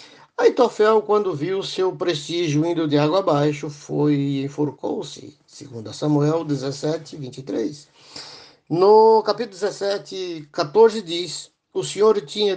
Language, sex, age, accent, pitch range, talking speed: Portuguese, male, 60-79, Brazilian, 150-205 Hz, 115 wpm